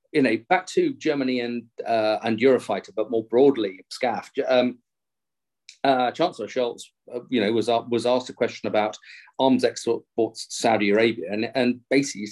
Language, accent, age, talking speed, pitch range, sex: English, British, 40-59, 170 wpm, 115-135 Hz, male